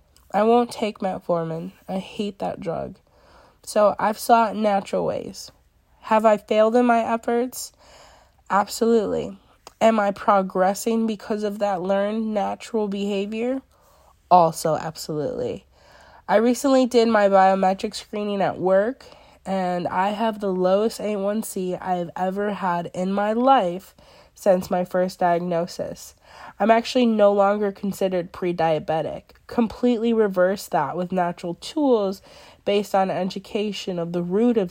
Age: 20-39